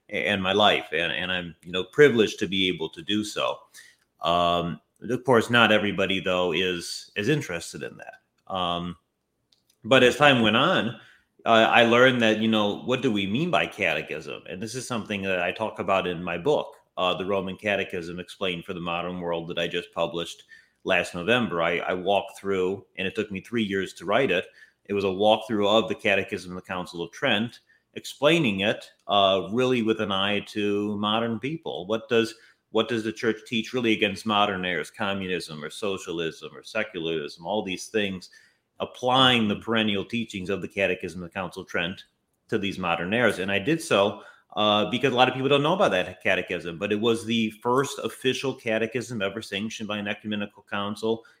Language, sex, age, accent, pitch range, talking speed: English, male, 30-49, American, 90-115 Hz, 195 wpm